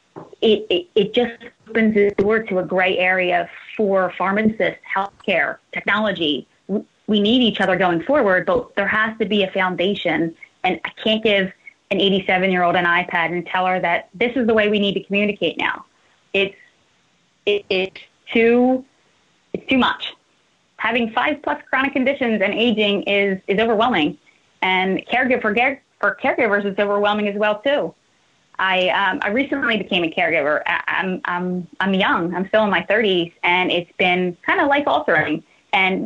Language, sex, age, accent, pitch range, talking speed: English, female, 20-39, American, 185-220 Hz, 165 wpm